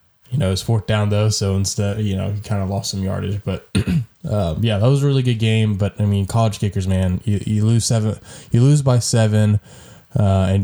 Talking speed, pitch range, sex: 235 wpm, 95-115 Hz, male